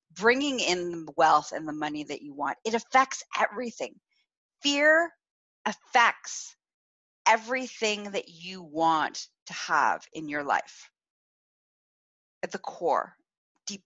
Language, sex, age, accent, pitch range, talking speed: English, female, 40-59, American, 150-215 Hz, 120 wpm